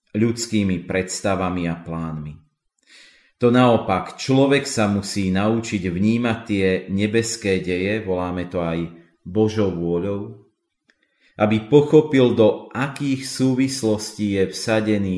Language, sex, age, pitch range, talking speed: Slovak, male, 40-59, 90-115 Hz, 105 wpm